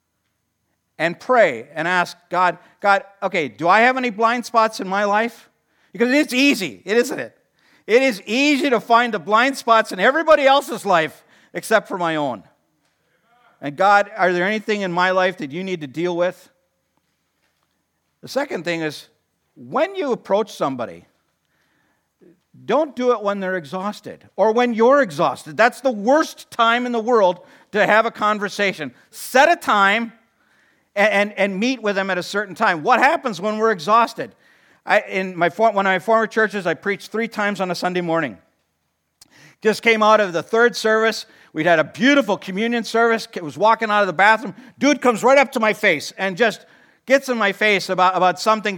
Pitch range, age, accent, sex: 185-235 Hz, 50-69, American, male